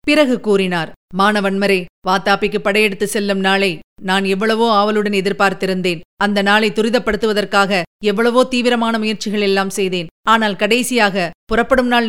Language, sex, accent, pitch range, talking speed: Tamil, female, native, 195-225 Hz, 110 wpm